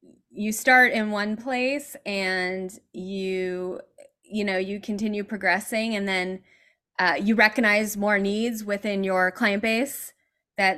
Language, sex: English, female